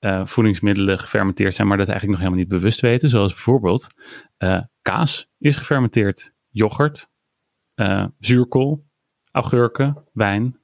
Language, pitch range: Dutch, 100-130 Hz